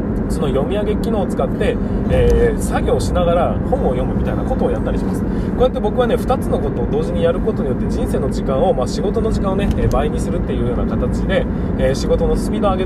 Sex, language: male, Japanese